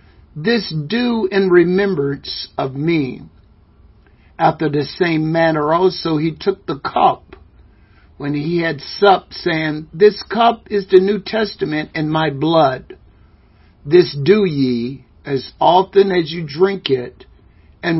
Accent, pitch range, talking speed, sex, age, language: American, 125-185 Hz, 130 wpm, male, 60-79, English